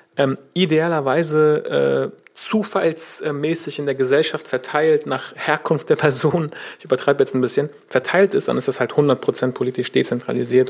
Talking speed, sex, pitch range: 145 wpm, male, 135-190 Hz